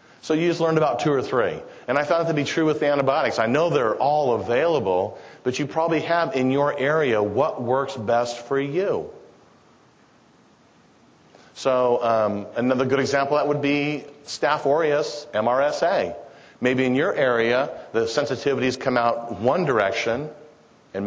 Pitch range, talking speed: 120-150 Hz, 165 wpm